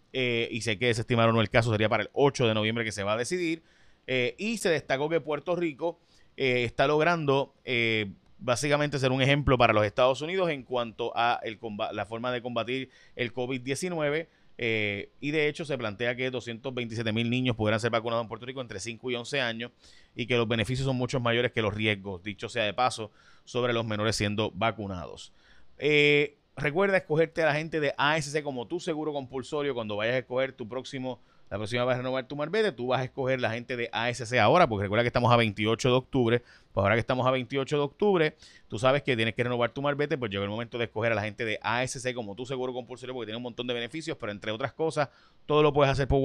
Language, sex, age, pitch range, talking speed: Spanish, male, 30-49, 115-140 Hz, 230 wpm